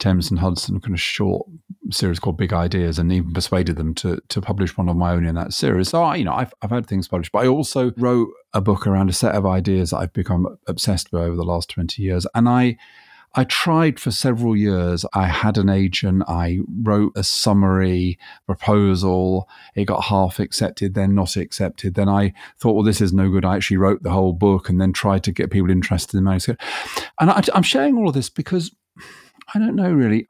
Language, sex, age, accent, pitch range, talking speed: English, male, 30-49, British, 95-145 Hz, 225 wpm